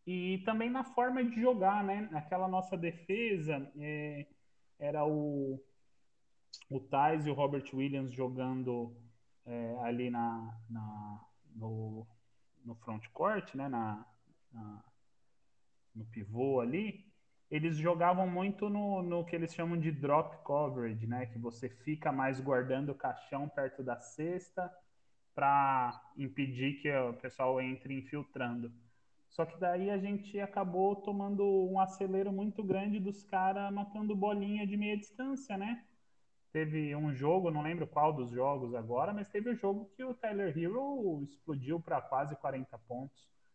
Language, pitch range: Portuguese, 130-190 Hz